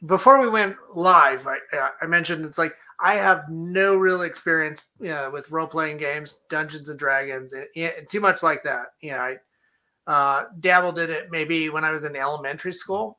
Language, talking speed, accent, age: English, 190 wpm, American, 30-49